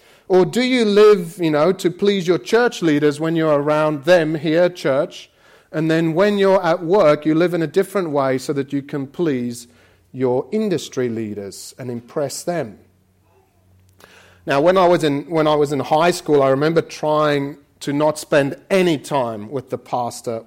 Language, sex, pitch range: English, male, 135-180 Hz